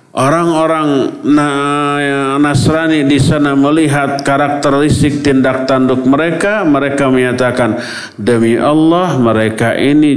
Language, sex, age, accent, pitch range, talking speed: Indonesian, male, 50-69, native, 140-225 Hz, 90 wpm